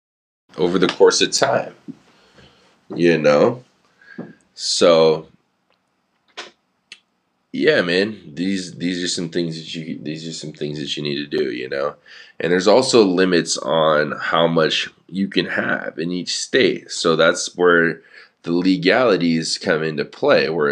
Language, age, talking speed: English, 20-39, 145 wpm